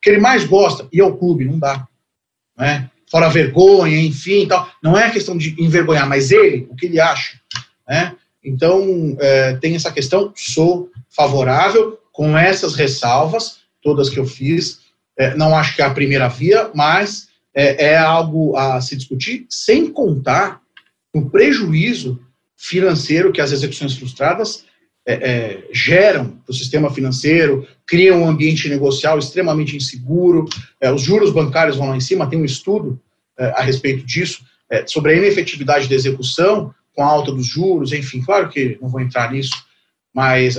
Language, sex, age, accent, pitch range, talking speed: Portuguese, male, 40-59, Brazilian, 135-175 Hz, 165 wpm